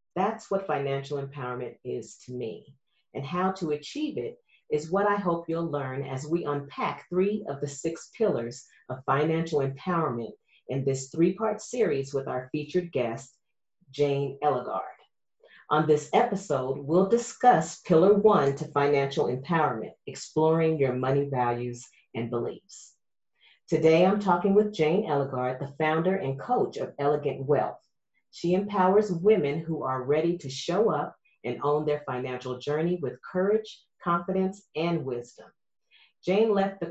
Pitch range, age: 135-175 Hz, 40-59